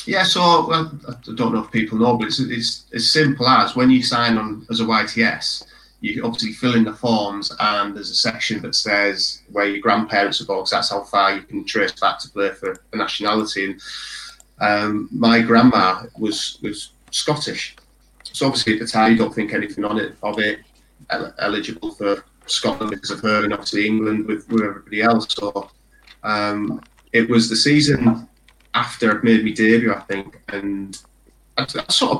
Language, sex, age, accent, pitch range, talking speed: English, male, 30-49, British, 105-120 Hz, 190 wpm